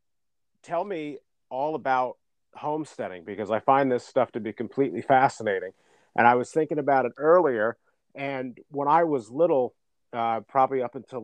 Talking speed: 160 wpm